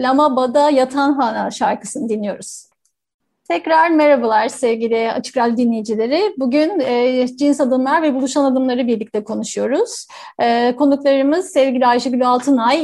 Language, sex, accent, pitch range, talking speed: Turkish, female, native, 245-285 Hz, 115 wpm